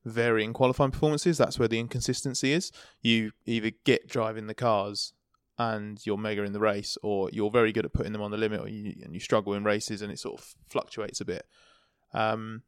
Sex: male